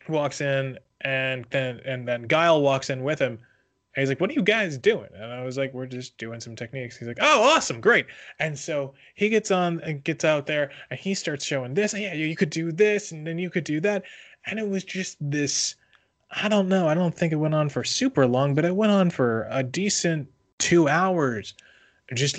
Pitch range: 120-160 Hz